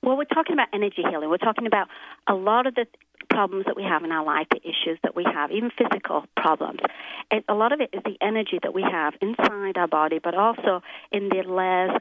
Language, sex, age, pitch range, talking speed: English, female, 40-59, 180-225 Hz, 235 wpm